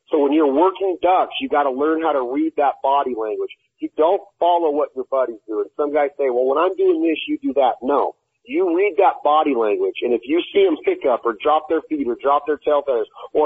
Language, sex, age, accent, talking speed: English, male, 40-59, American, 250 wpm